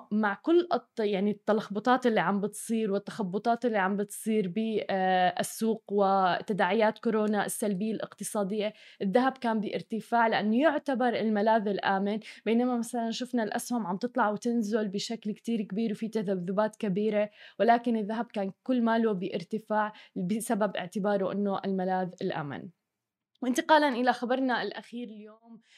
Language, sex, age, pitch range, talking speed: Arabic, female, 20-39, 210-245 Hz, 120 wpm